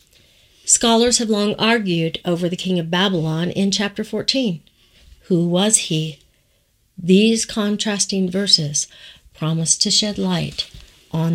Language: English